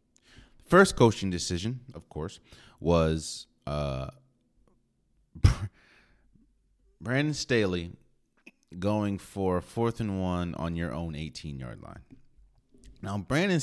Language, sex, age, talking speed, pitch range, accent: English, male, 30-49, 90 wpm, 75-105 Hz, American